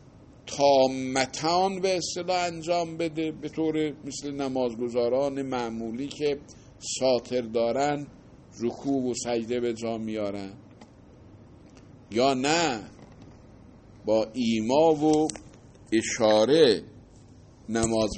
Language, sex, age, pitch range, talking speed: Persian, male, 50-69, 105-155 Hz, 85 wpm